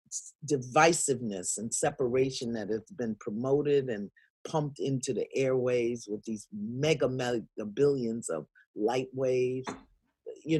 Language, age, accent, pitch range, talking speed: English, 40-59, American, 130-180 Hz, 120 wpm